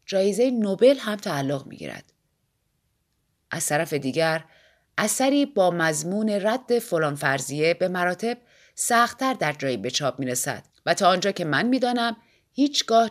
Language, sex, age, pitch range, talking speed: Persian, female, 30-49, 160-230 Hz, 135 wpm